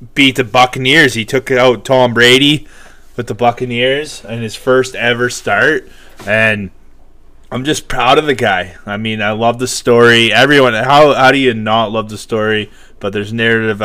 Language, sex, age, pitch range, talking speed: English, male, 20-39, 100-125 Hz, 180 wpm